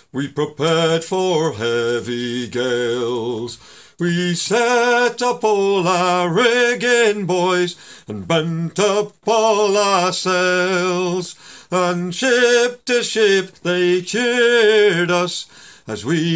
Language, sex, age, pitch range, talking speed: French, male, 50-69, 140-200 Hz, 100 wpm